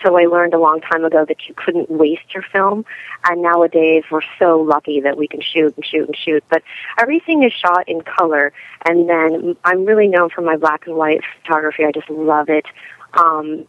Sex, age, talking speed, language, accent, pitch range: female, 30-49, 210 wpm, English, American, 155-180 Hz